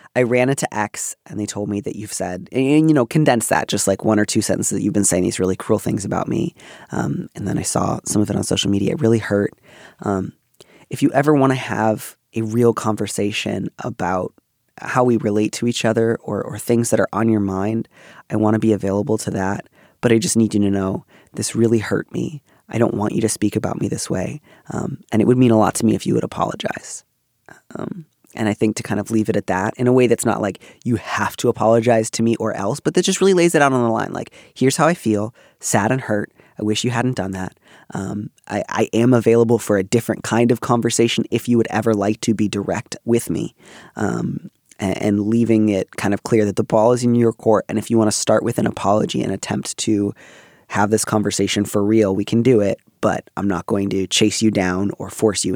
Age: 20-39